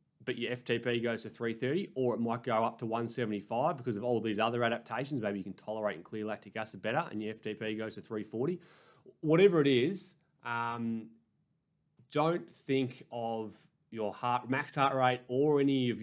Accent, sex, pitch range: Australian, male, 105-125 Hz